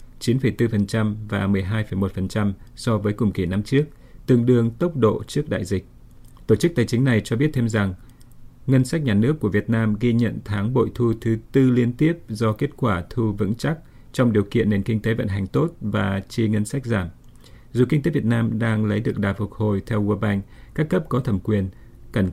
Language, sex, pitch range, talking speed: Vietnamese, male, 105-125 Hz, 220 wpm